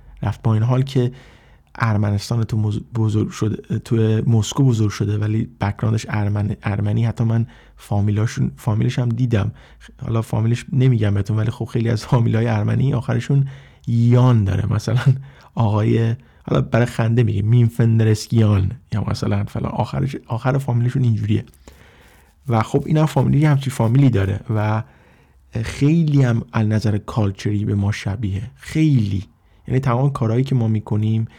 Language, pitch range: Persian, 105-120 Hz